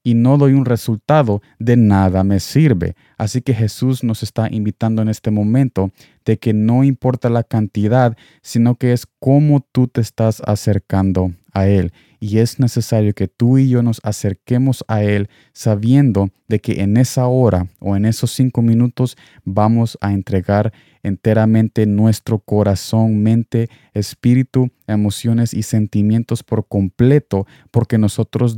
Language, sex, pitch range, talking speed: Spanish, male, 105-120 Hz, 150 wpm